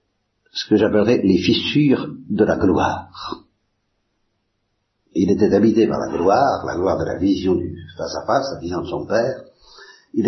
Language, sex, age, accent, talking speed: Italian, male, 60-79, French, 170 wpm